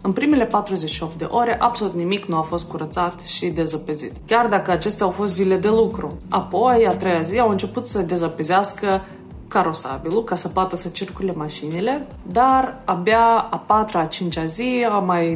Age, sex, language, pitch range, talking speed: 30-49, female, Romanian, 170-225 Hz, 175 wpm